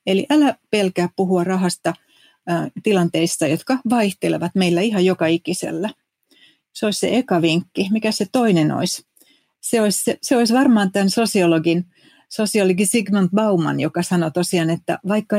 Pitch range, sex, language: 175-215 Hz, female, Finnish